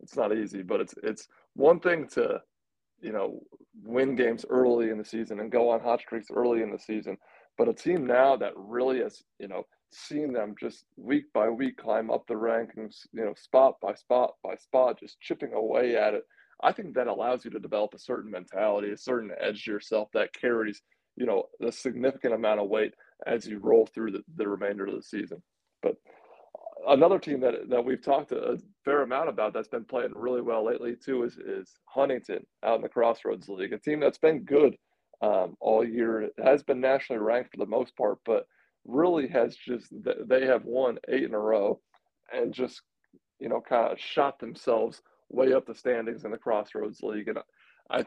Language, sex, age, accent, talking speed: English, male, 20-39, American, 200 wpm